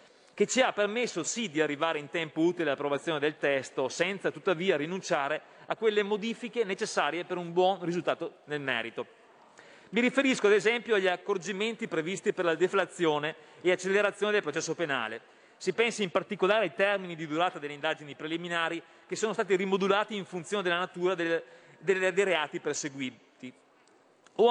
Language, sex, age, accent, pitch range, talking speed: Italian, male, 30-49, native, 155-205 Hz, 155 wpm